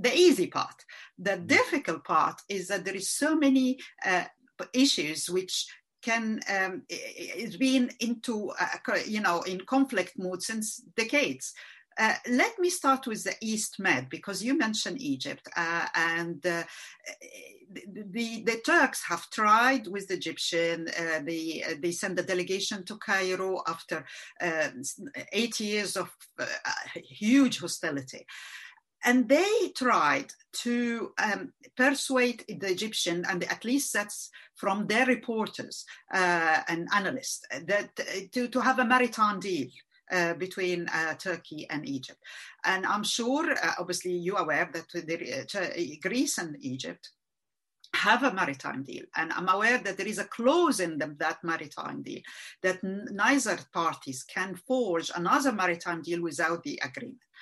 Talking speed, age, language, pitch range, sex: 145 wpm, 50-69, Turkish, 175-255 Hz, female